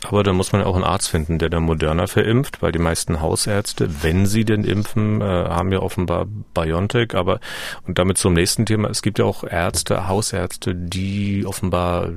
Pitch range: 90-115 Hz